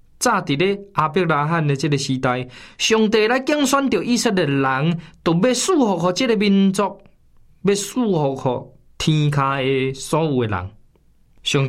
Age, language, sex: 20-39, Chinese, male